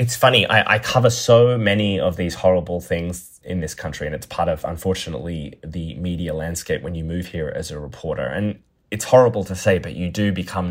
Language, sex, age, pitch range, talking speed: English, male, 20-39, 90-110 Hz, 215 wpm